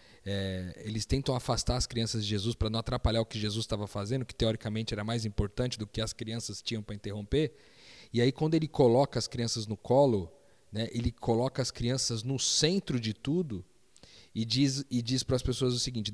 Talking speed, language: 205 wpm, Portuguese